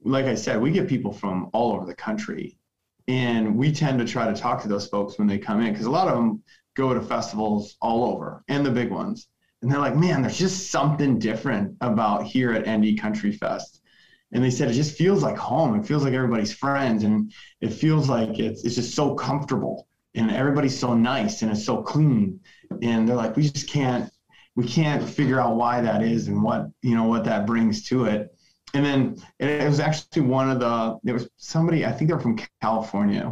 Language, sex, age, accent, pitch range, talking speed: English, male, 20-39, American, 110-140 Hz, 220 wpm